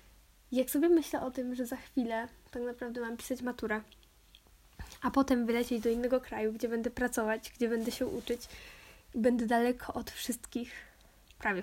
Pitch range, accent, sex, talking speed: 230-260 Hz, native, female, 165 wpm